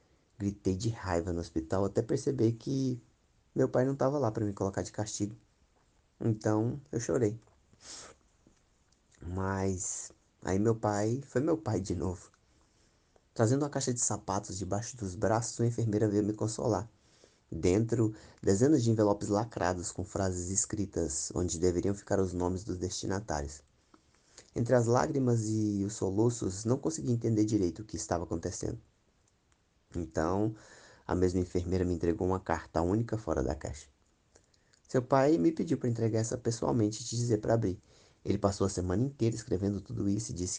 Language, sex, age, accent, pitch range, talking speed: Portuguese, male, 20-39, Brazilian, 85-110 Hz, 160 wpm